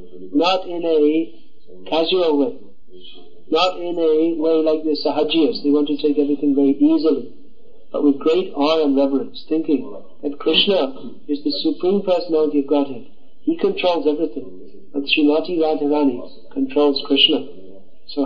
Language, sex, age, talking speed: English, male, 50-69, 140 wpm